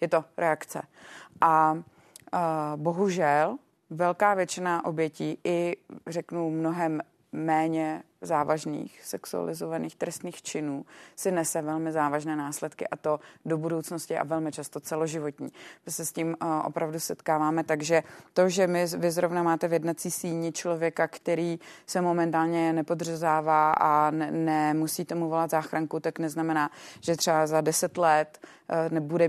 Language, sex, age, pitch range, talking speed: Czech, female, 30-49, 155-175 Hz, 135 wpm